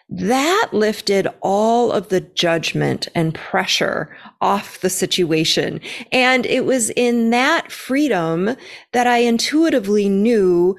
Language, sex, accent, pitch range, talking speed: English, female, American, 175-235 Hz, 115 wpm